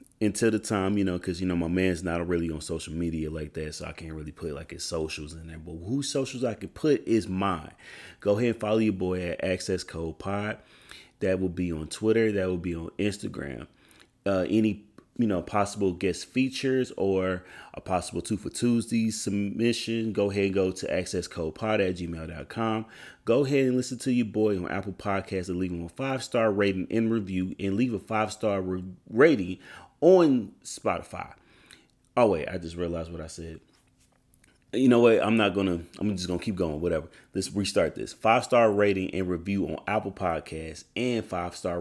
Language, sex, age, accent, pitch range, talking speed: English, male, 30-49, American, 85-110 Hz, 200 wpm